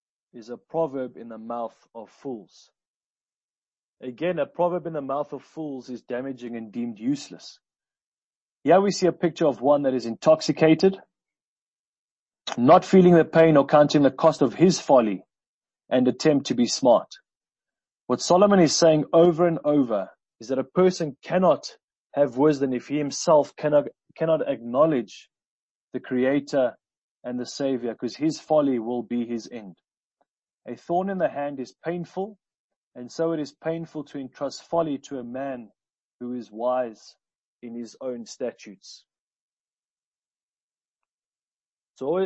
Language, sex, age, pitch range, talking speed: English, male, 30-49, 125-160 Hz, 150 wpm